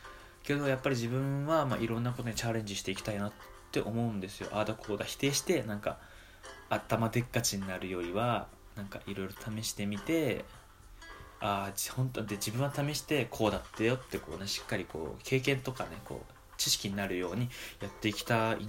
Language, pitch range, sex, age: Japanese, 100-130 Hz, male, 20-39